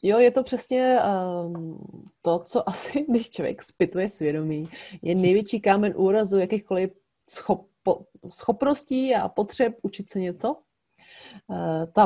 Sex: female